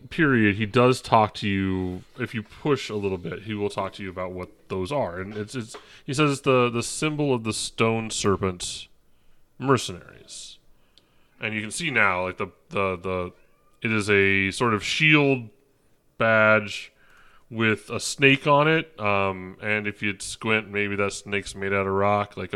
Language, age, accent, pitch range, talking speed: English, 30-49, American, 100-140 Hz, 180 wpm